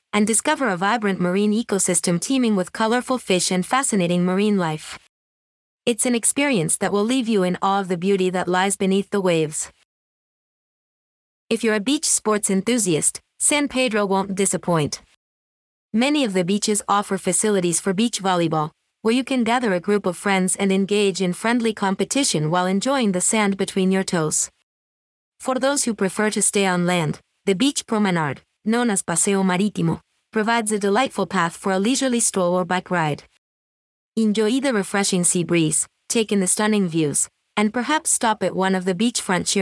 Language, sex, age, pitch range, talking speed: English, female, 30-49, 180-225 Hz, 175 wpm